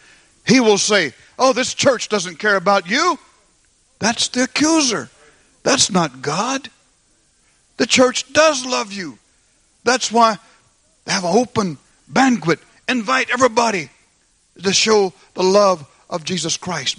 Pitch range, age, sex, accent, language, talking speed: 145-240 Hz, 60-79, male, American, English, 130 wpm